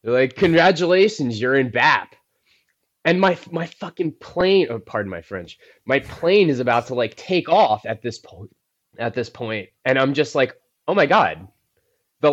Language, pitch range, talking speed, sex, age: English, 105-135 Hz, 180 wpm, male, 20-39